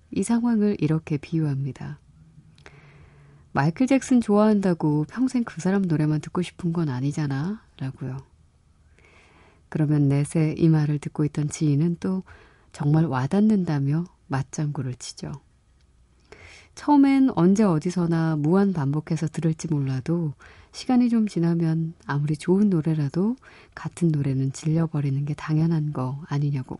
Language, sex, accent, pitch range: Korean, female, native, 140-180 Hz